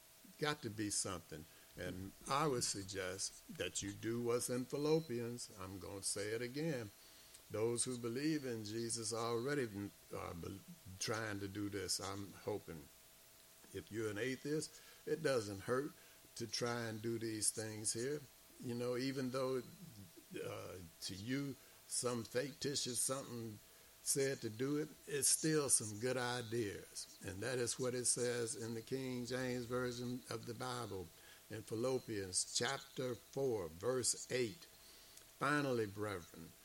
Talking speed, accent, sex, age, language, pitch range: 145 wpm, American, male, 60-79, English, 110-130 Hz